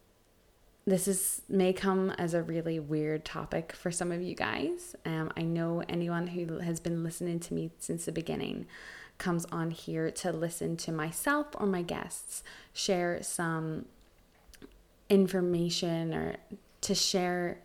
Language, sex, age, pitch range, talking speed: English, female, 20-39, 160-180 Hz, 145 wpm